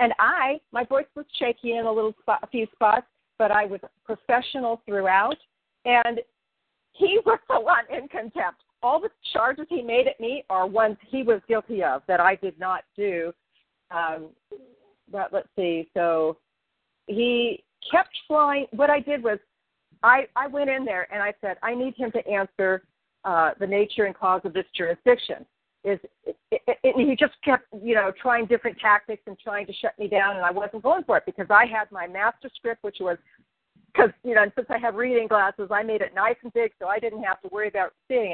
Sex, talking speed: female, 200 wpm